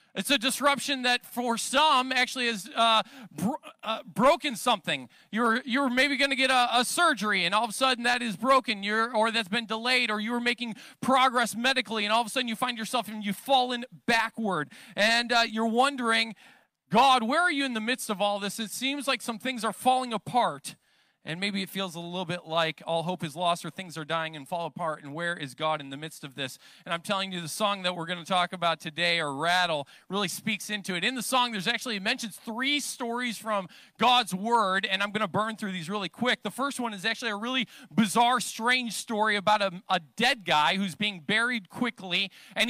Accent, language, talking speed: American, English, 230 wpm